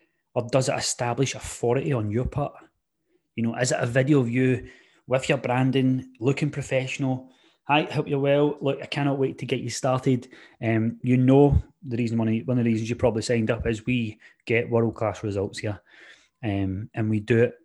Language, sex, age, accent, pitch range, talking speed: English, male, 20-39, British, 115-140 Hz, 195 wpm